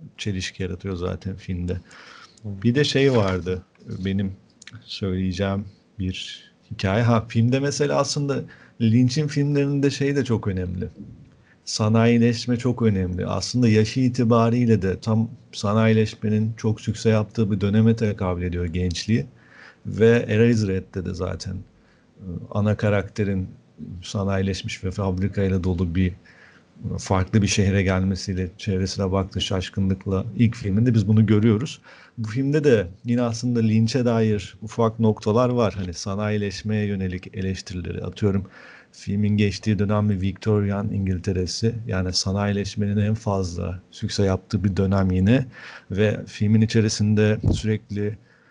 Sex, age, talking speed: male, 50-69, 120 wpm